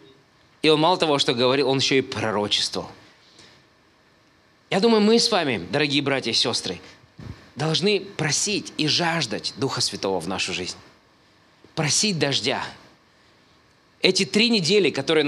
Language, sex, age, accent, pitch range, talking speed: Russian, male, 20-39, native, 130-190 Hz, 135 wpm